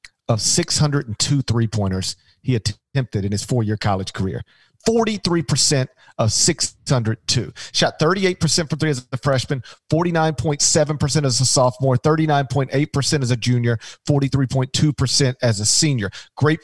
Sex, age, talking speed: male, 40-59, 120 wpm